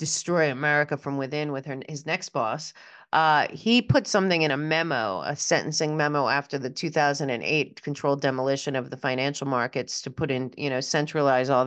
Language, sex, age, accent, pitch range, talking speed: English, female, 30-49, American, 145-185 Hz, 180 wpm